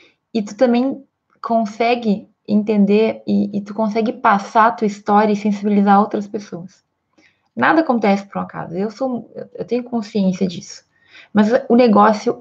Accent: Brazilian